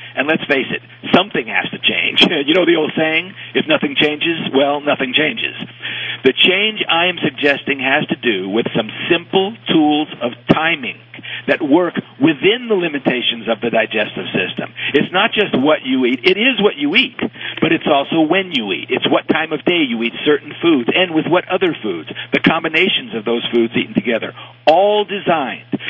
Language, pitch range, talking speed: English, 135-185 Hz, 190 wpm